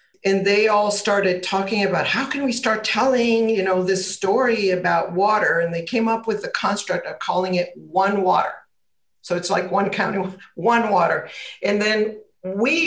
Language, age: English, 50-69